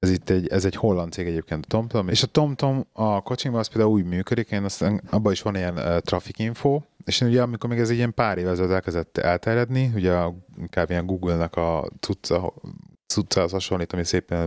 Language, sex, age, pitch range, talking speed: Hungarian, male, 30-49, 90-115 Hz, 210 wpm